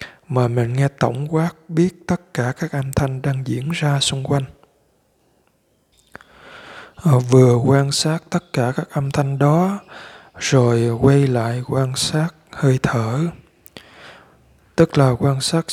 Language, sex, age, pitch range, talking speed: Vietnamese, male, 20-39, 125-160 Hz, 135 wpm